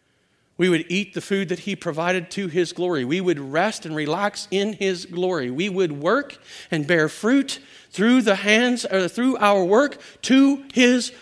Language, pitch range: English, 180-255 Hz